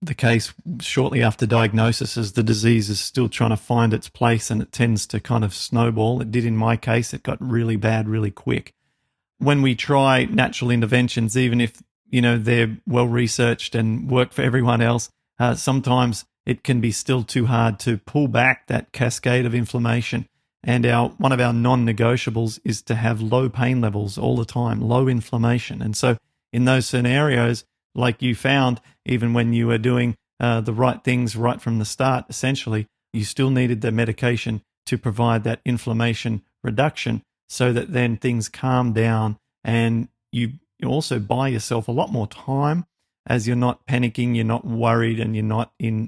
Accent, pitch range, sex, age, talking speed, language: Australian, 115-125 Hz, male, 40-59, 180 wpm, English